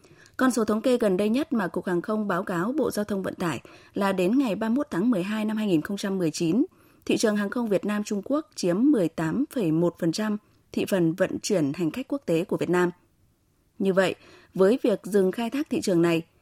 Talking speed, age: 210 wpm, 20-39